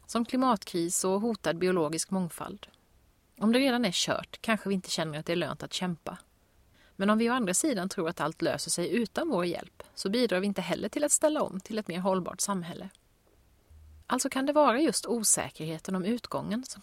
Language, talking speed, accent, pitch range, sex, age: Swedish, 205 wpm, native, 170-230 Hz, female, 30-49